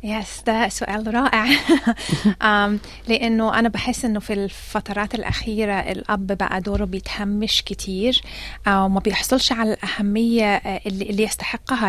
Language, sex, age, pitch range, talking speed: Arabic, female, 30-49, 195-230 Hz, 120 wpm